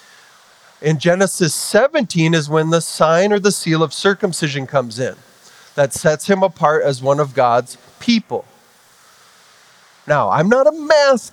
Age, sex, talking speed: 30-49, male, 150 wpm